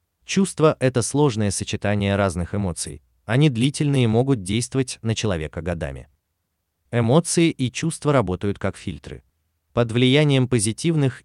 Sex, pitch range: male, 90-135 Hz